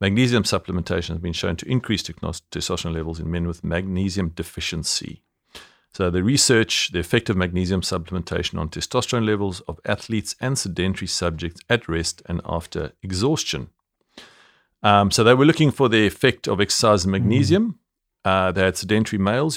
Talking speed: 155 wpm